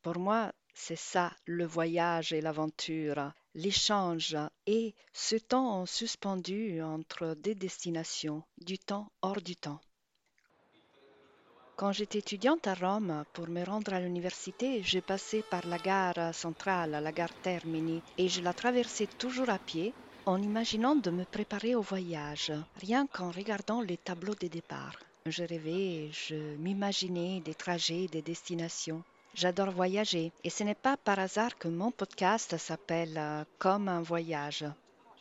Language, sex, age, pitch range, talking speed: French, female, 50-69, 165-210 Hz, 145 wpm